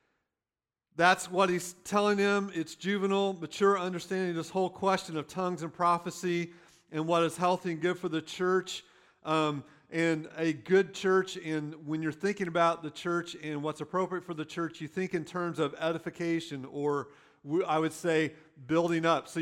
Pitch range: 155-185 Hz